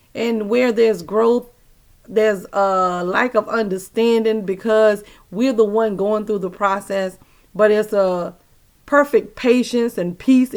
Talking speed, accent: 135 wpm, American